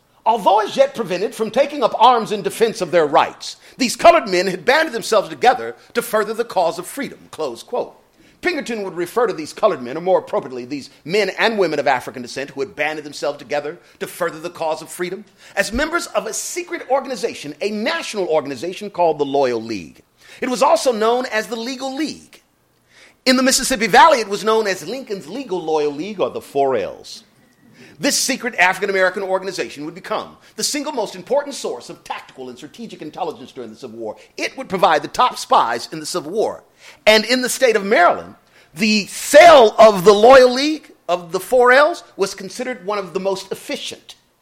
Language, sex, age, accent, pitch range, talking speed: English, male, 40-59, American, 180-255 Hz, 195 wpm